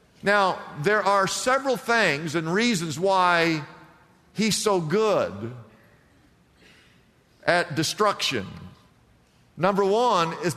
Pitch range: 150-200 Hz